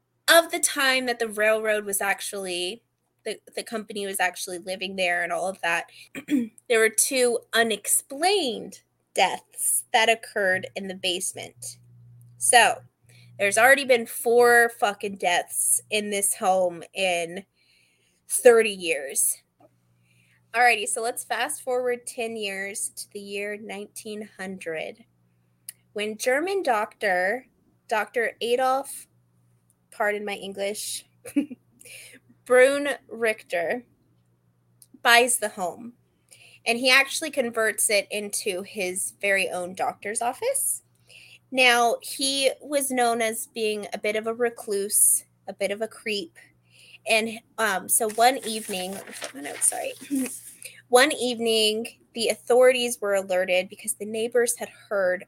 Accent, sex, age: American, female, 20-39